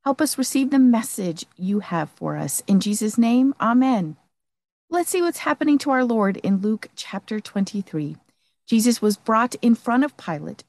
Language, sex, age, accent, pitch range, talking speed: English, female, 50-69, American, 180-250 Hz, 175 wpm